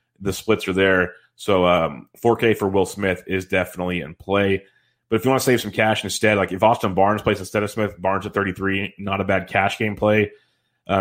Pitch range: 95-110 Hz